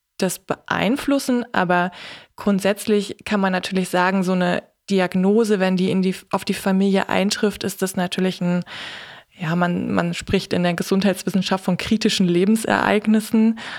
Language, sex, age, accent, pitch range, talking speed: German, female, 20-39, German, 185-200 Hz, 140 wpm